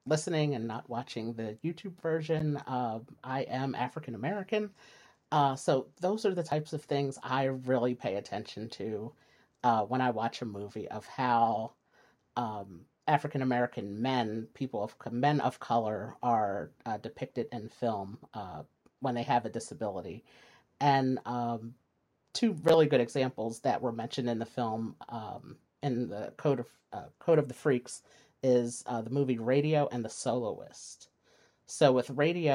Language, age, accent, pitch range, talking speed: English, 40-59, American, 120-145 Hz, 160 wpm